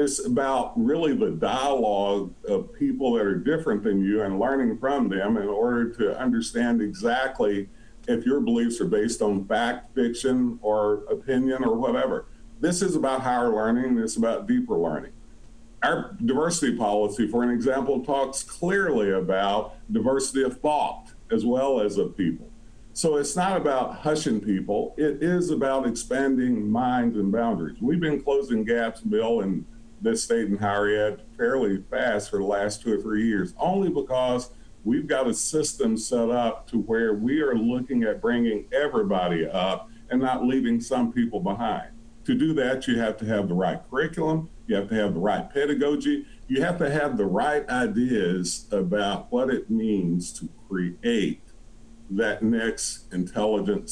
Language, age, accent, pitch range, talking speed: English, 50-69, American, 105-160 Hz, 165 wpm